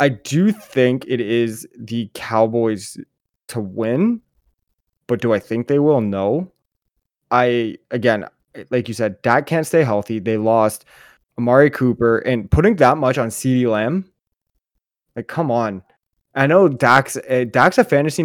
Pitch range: 110-135 Hz